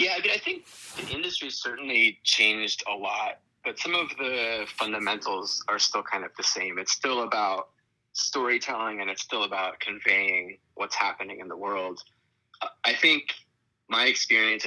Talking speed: 160 wpm